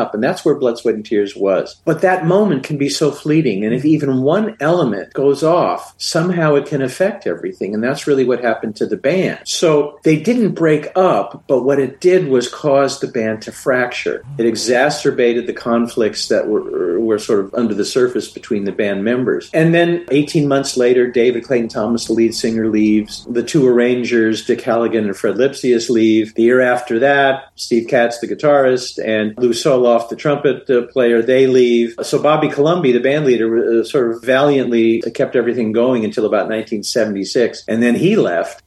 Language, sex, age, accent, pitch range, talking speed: English, male, 50-69, American, 115-150 Hz, 195 wpm